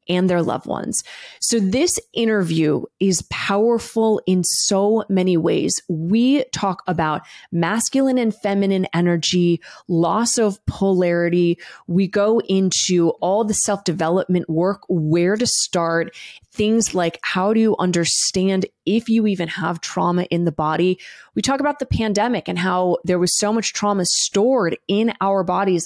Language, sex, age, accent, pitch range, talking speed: English, female, 20-39, American, 175-220 Hz, 145 wpm